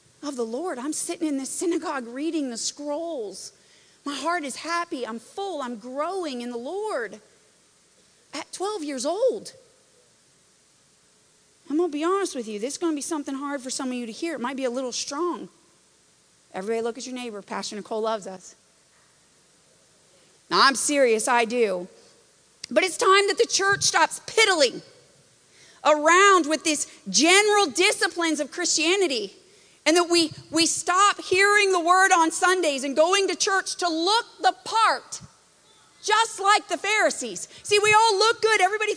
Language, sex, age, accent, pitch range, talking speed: English, female, 40-59, American, 285-405 Hz, 170 wpm